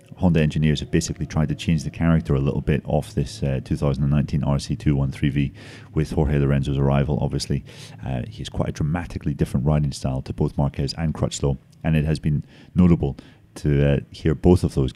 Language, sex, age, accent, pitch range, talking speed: English, male, 30-49, British, 70-80 Hz, 185 wpm